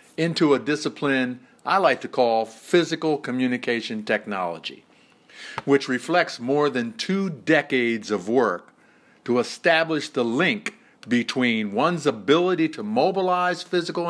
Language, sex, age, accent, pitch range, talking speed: English, male, 50-69, American, 120-160 Hz, 120 wpm